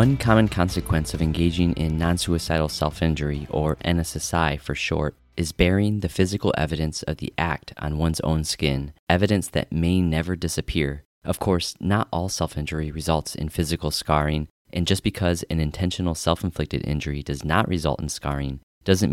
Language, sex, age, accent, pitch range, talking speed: English, male, 30-49, American, 75-90 Hz, 160 wpm